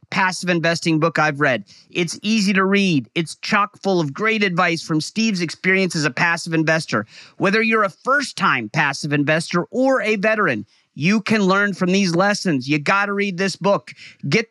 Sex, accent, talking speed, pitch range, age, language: male, American, 185 wpm, 175-220 Hz, 30-49, English